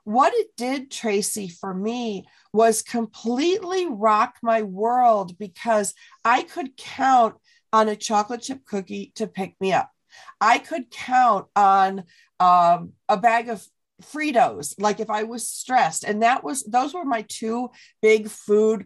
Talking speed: 150 wpm